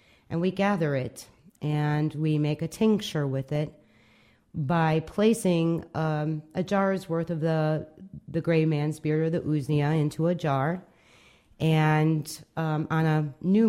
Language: English